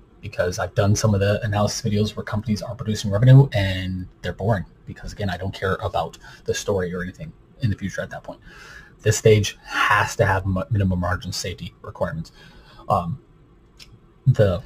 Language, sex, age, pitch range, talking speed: English, male, 30-49, 95-115 Hz, 175 wpm